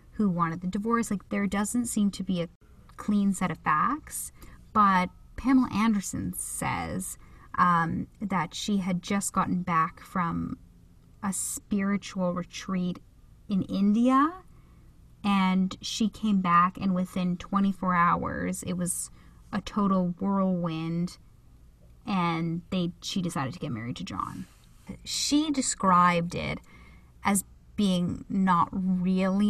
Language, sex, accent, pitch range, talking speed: English, female, American, 170-205 Hz, 125 wpm